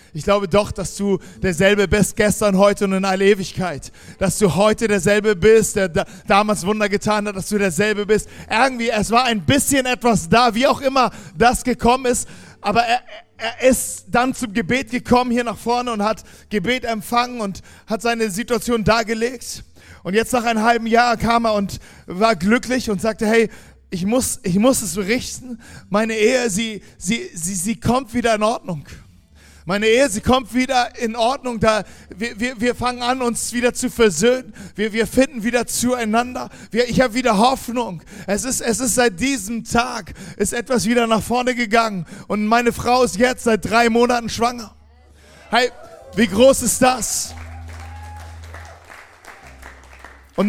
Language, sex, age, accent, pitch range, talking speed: German, male, 40-59, German, 200-240 Hz, 170 wpm